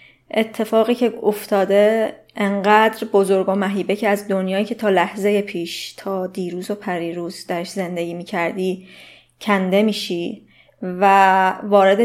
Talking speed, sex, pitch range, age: 125 wpm, female, 190-220 Hz, 20-39